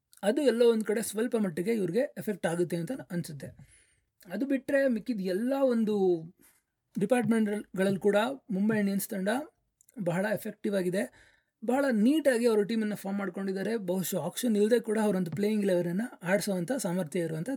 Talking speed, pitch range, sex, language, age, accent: 135 wpm, 185-235 Hz, male, Kannada, 30-49, native